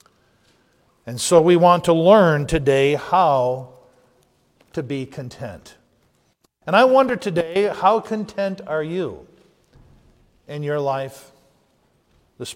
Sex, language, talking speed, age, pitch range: male, English, 110 wpm, 50-69, 170-255 Hz